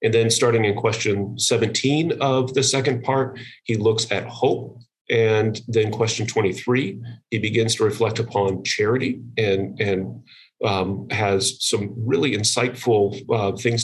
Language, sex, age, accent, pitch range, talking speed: English, male, 40-59, American, 105-125 Hz, 145 wpm